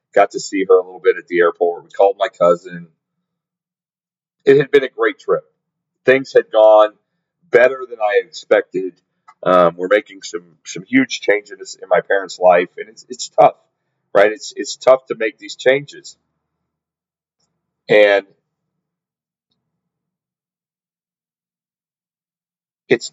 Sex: male